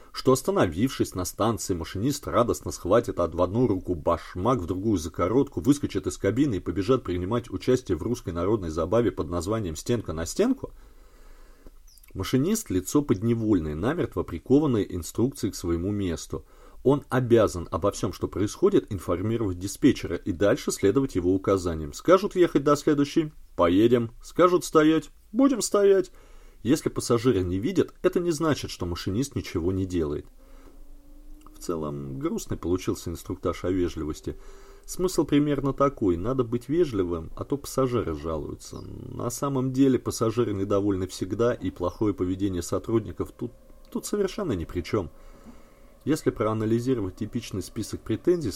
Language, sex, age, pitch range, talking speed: Russian, male, 30-49, 90-130 Hz, 140 wpm